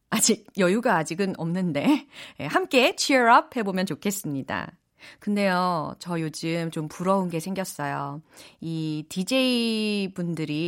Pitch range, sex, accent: 170-255 Hz, female, native